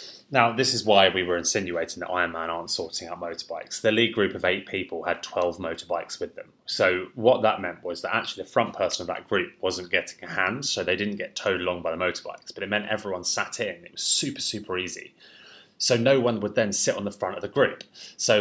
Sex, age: male, 20-39